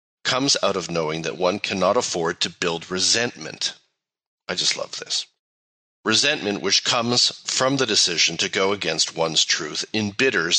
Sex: male